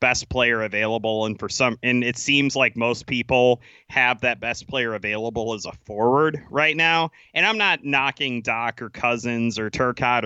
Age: 30-49